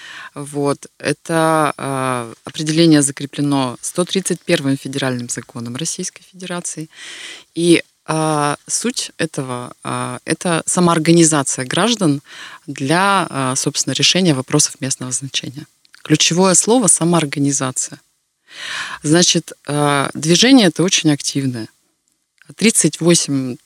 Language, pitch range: Russian, 135-165 Hz